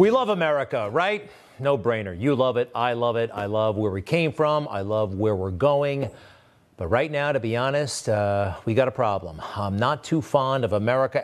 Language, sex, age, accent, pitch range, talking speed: English, male, 40-59, American, 110-155 Hz, 215 wpm